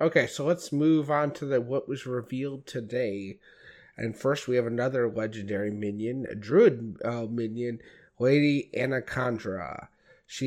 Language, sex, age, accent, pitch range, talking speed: English, male, 30-49, American, 115-140 Hz, 145 wpm